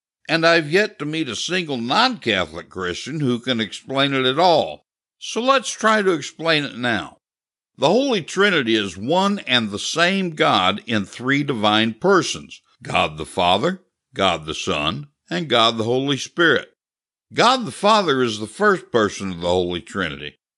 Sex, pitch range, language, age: male, 105-170 Hz, English, 60-79